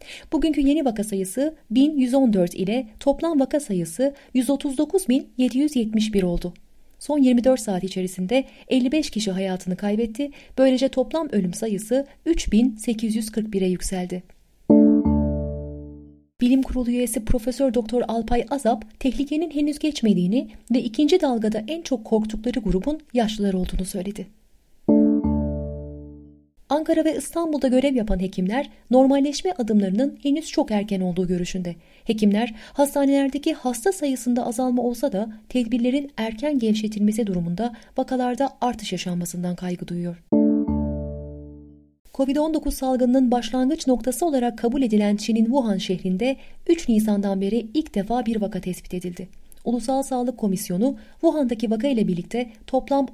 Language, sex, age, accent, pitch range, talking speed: Turkish, female, 30-49, native, 190-265 Hz, 115 wpm